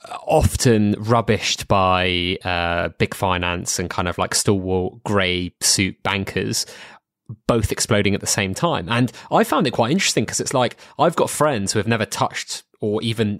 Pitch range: 95-115 Hz